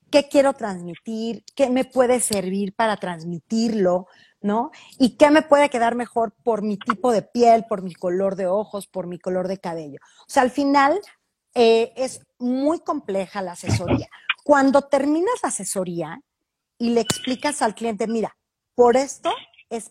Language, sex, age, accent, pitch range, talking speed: Spanish, female, 40-59, Mexican, 210-280 Hz, 165 wpm